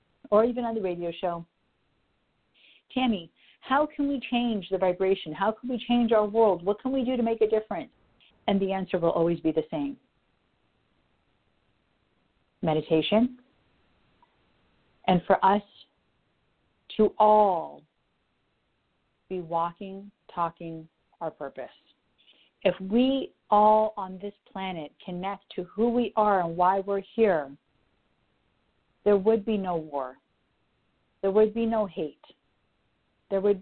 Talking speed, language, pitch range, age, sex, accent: 130 wpm, English, 180-220 Hz, 50-69, female, American